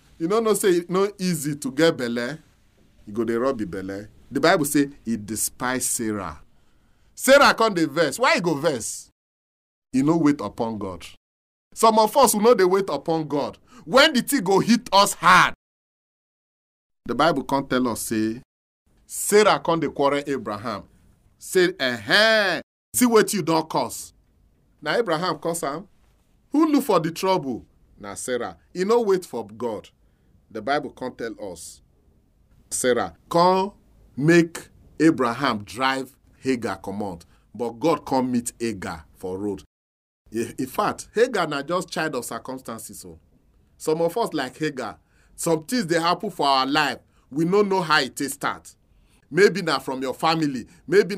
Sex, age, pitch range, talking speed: male, 40-59, 110-180 Hz, 160 wpm